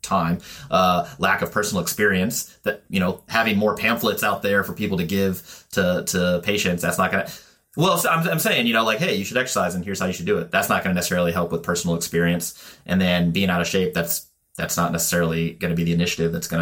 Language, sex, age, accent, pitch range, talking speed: English, male, 30-49, American, 85-105 Hz, 245 wpm